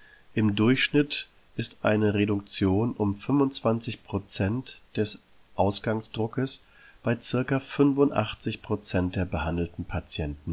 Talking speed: 85 wpm